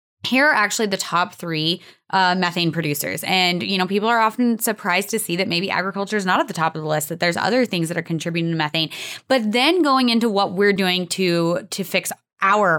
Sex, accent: female, American